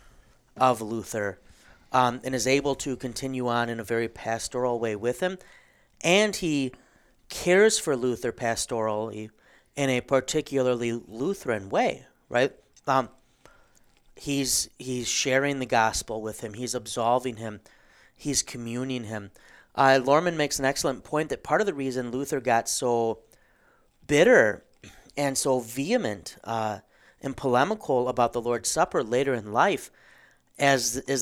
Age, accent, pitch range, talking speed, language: 30-49, American, 115-135 Hz, 140 wpm, English